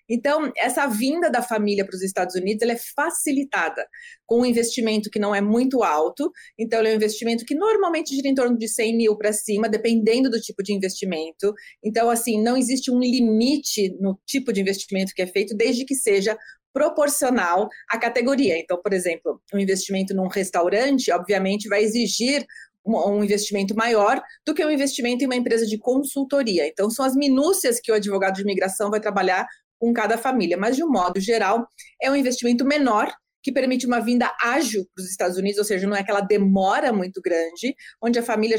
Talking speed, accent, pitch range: 195 wpm, Brazilian, 205-265 Hz